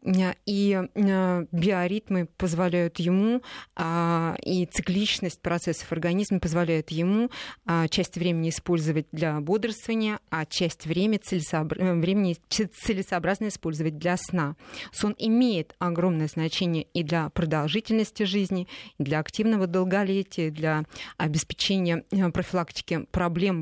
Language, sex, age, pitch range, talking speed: Russian, female, 20-39, 165-200 Hz, 95 wpm